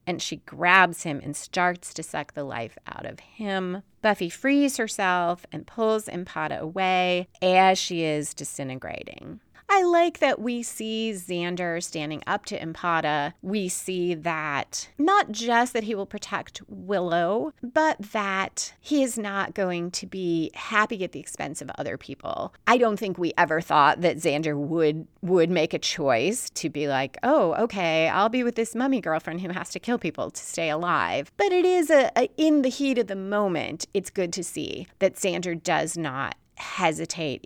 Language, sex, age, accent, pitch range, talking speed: English, female, 30-49, American, 170-225 Hz, 175 wpm